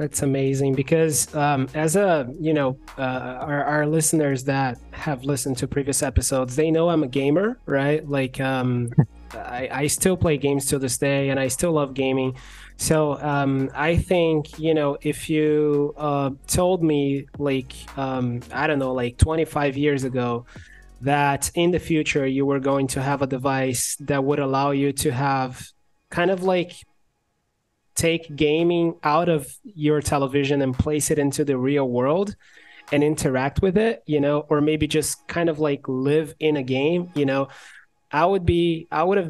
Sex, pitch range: male, 135-155 Hz